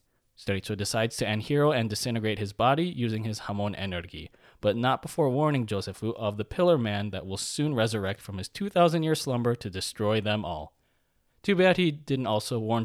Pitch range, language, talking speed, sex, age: 105-150 Hz, English, 190 wpm, male, 20-39